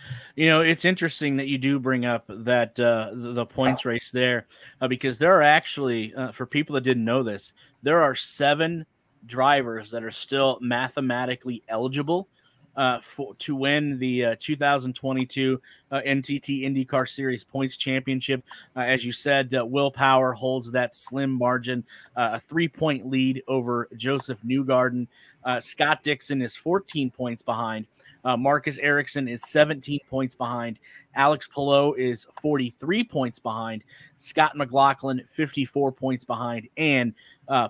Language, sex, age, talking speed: English, male, 30-49, 150 wpm